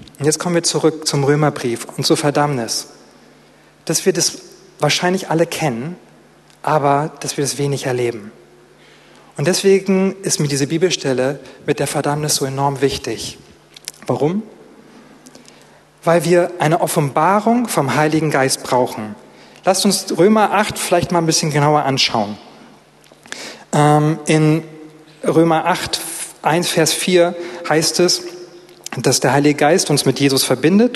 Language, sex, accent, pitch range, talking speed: German, male, German, 145-180 Hz, 135 wpm